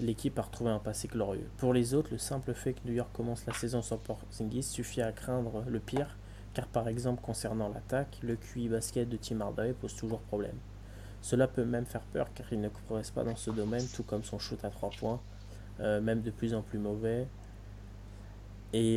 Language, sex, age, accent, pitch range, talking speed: French, male, 20-39, French, 105-120 Hz, 210 wpm